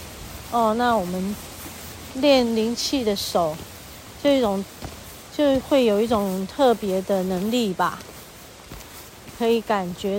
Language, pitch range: Chinese, 195-245 Hz